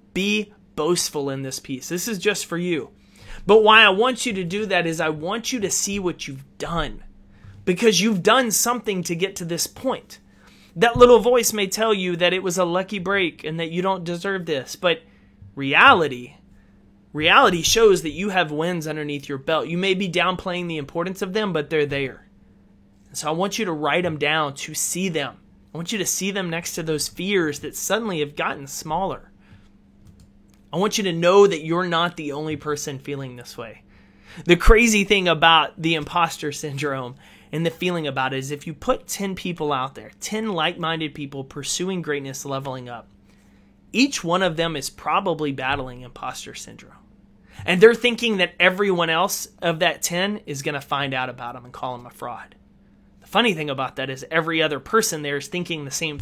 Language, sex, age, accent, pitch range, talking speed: English, male, 30-49, American, 140-190 Hz, 200 wpm